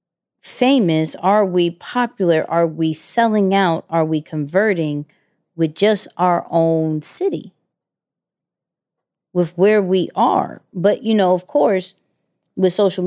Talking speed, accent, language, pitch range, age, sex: 125 wpm, American, English, 160-200 Hz, 30-49, female